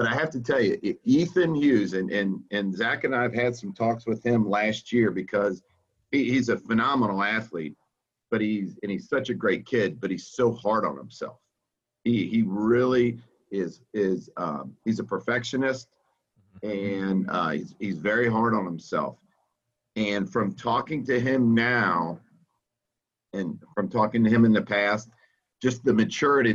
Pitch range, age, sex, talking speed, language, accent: 100-120 Hz, 50-69, male, 170 wpm, English, American